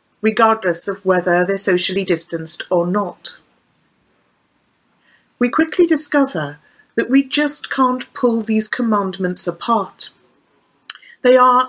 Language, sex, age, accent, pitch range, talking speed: English, female, 40-59, British, 195-260 Hz, 110 wpm